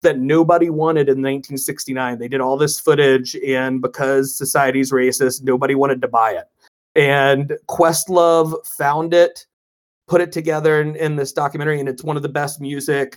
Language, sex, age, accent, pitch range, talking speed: English, male, 30-49, American, 130-155 Hz, 170 wpm